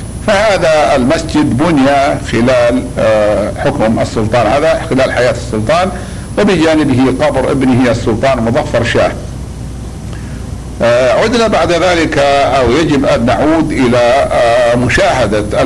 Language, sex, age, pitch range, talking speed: Arabic, male, 60-79, 120-150 Hz, 95 wpm